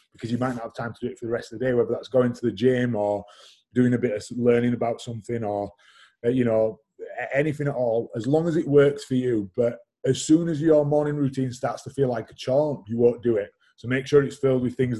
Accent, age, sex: British, 20-39, male